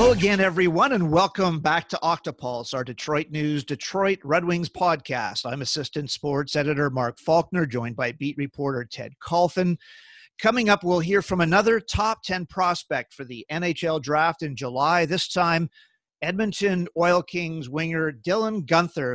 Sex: male